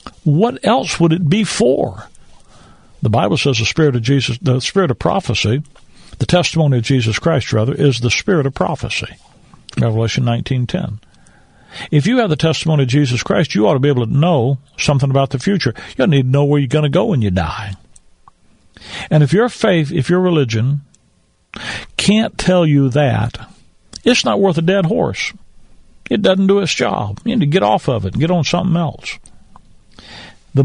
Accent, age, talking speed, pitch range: American, 60-79, 190 wpm, 120-170 Hz